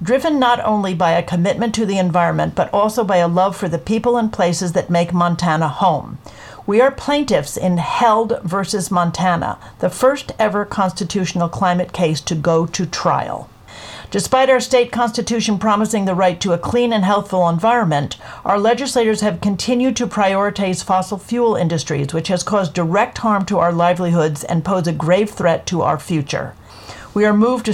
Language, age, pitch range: English, 50-69, 170-215 Hz